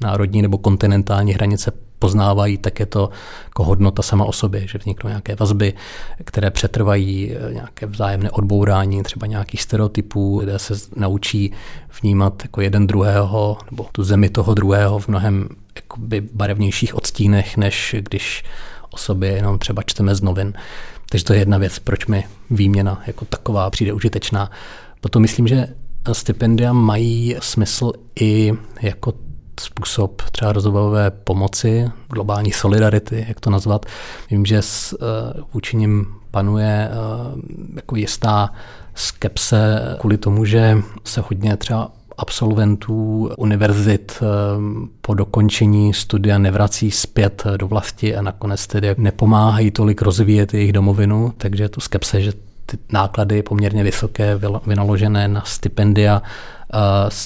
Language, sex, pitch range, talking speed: Czech, male, 100-110 Hz, 130 wpm